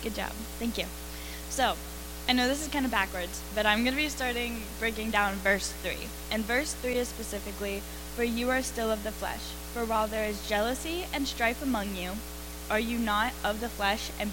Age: 10-29